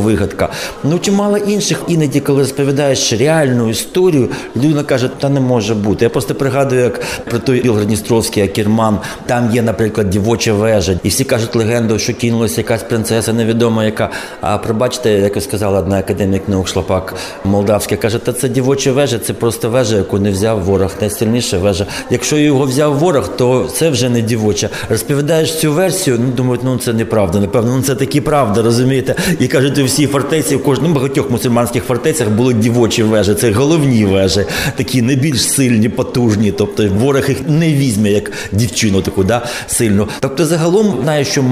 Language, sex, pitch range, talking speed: Ukrainian, male, 110-140 Hz, 170 wpm